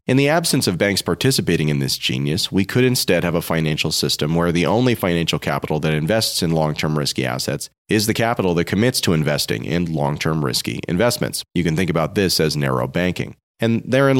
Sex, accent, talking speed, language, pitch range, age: male, American, 205 wpm, English, 80-115 Hz, 30-49